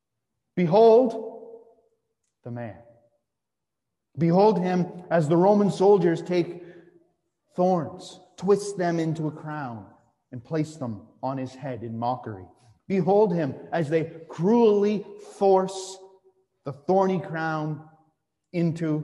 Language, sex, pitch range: English, male, 145-200 Hz